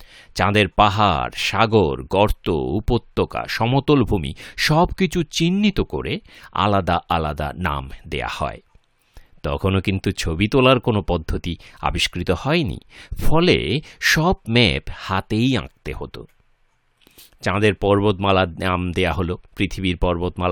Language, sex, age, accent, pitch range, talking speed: English, male, 50-69, Indian, 80-115 Hz, 110 wpm